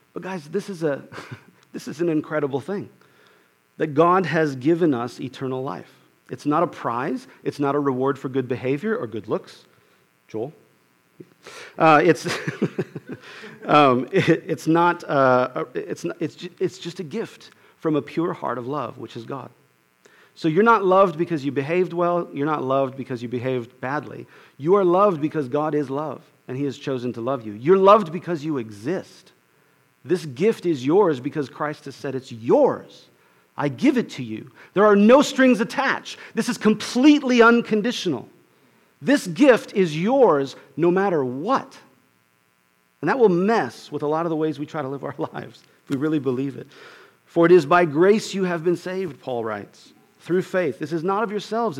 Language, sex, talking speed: English, male, 175 wpm